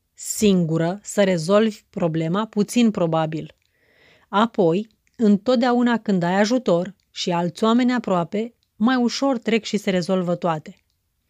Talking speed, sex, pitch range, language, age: 115 wpm, female, 185-230 Hz, Romanian, 30-49